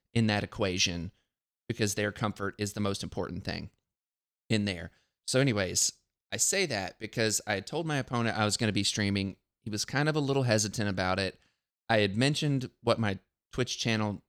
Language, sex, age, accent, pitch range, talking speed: English, male, 30-49, American, 100-115 Hz, 190 wpm